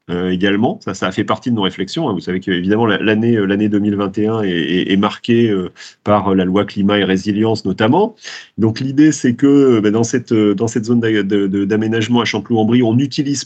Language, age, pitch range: French, 30-49, 110-140 Hz